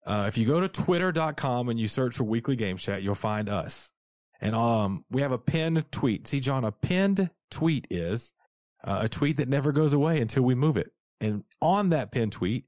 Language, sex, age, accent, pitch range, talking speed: English, male, 30-49, American, 105-150 Hz, 215 wpm